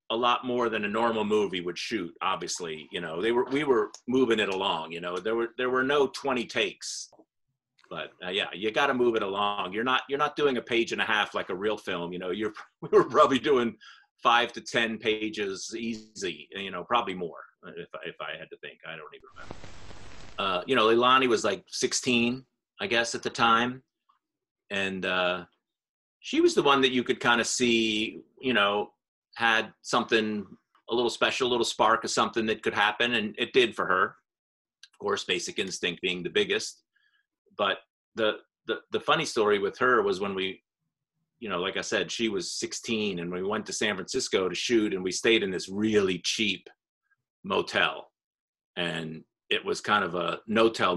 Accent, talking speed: American, 200 wpm